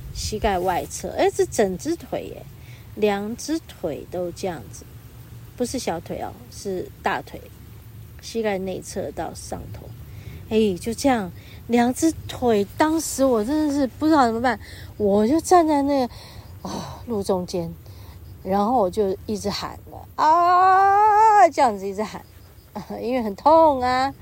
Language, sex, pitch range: Chinese, female, 170-265 Hz